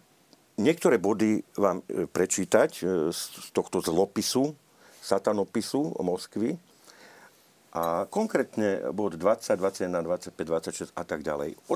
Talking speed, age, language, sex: 105 wpm, 50-69, Slovak, male